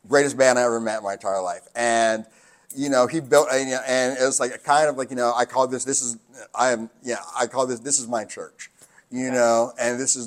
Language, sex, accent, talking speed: English, male, American, 275 wpm